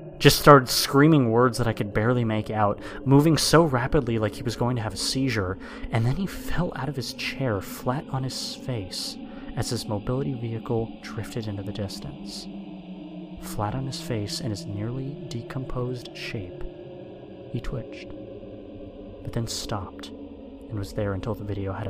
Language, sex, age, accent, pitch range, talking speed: English, male, 30-49, American, 105-135 Hz, 170 wpm